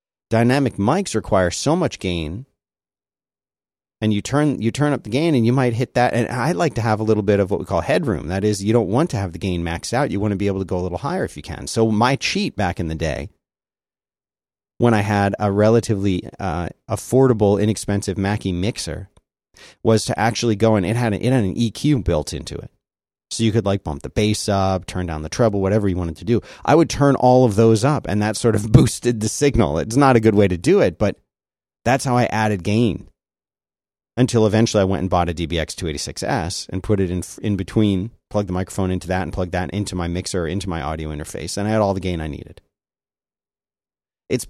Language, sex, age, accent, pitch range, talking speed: English, male, 30-49, American, 95-120 Hz, 235 wpm